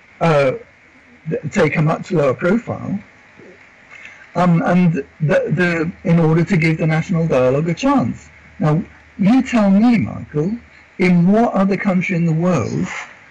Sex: male